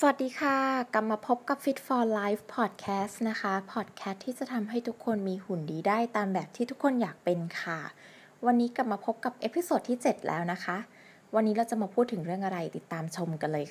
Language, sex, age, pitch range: Thai, female, 20-39, 170-230 Hz